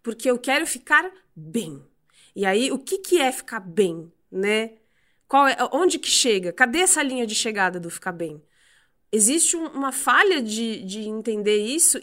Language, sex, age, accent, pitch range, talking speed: Portuguese, female, 20-39, Brazilian, 220-305 Hz, 160 wpm